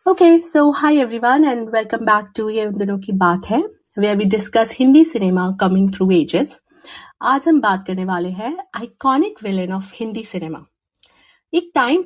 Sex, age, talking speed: female, 50-69, 140 wpm